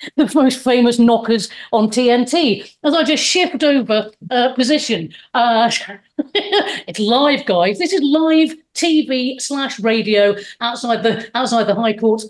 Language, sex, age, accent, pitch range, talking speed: English, female, 40-59, British, 205-260 Hz, 140 wpm